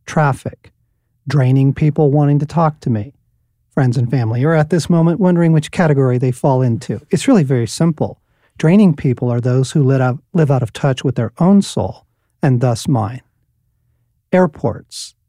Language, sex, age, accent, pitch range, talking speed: English, male, 50-69, American, 120-155 Hz, 165 wpm